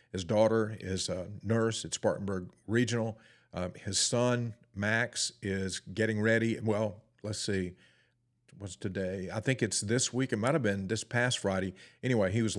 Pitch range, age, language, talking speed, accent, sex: 100-115 Hz, 50-69, English, 165 wpm, American, male